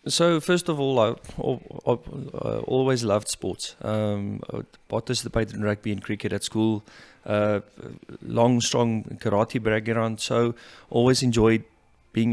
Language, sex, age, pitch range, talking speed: English, male, 30-49, 110-130 Hz, 140 wpm